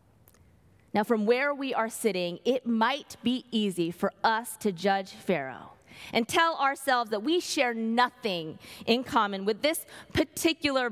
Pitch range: 190-275 Hz